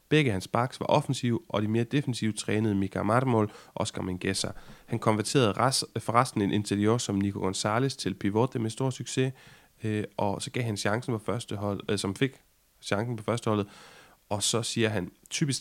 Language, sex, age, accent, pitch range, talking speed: Danish, male, 30-49, native, 105-130 Hz, 185 wpm